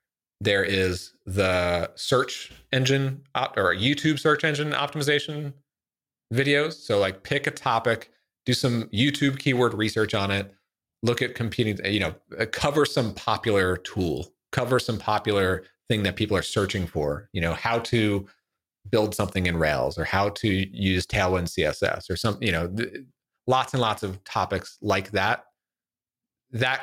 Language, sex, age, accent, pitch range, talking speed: English, male, 30-49, American, 95-125 Hz, 155 wpm